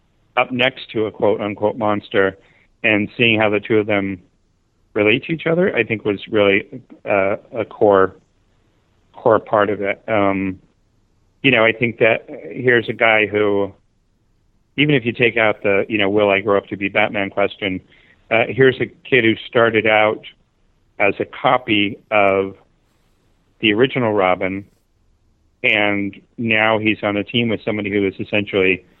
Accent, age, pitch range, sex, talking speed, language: American, 40-59, 100-110 Hz, male, 165 wpm, English